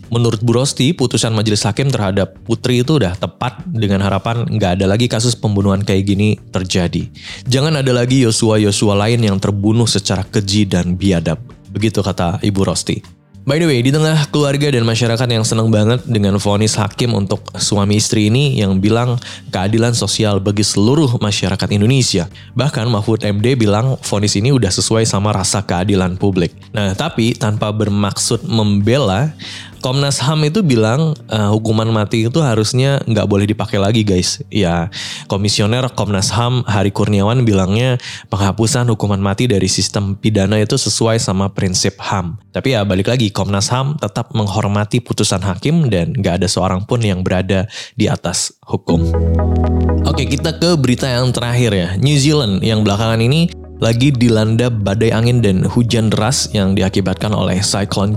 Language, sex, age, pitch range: Indonesian, male, 20-39, 100-120 Hz